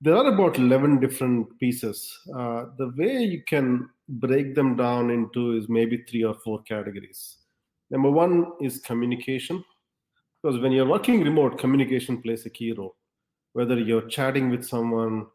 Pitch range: 105-125 Hz